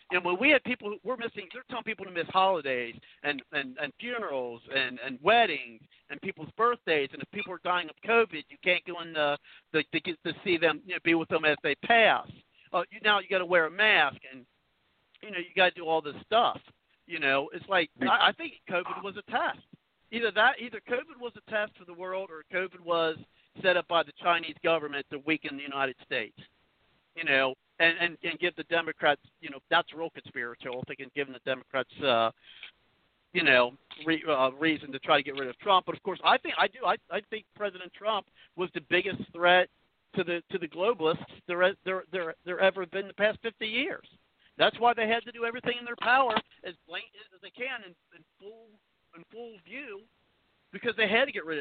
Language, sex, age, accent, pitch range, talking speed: English, male, 50-69, American, 150-210 Hz, 220 wpm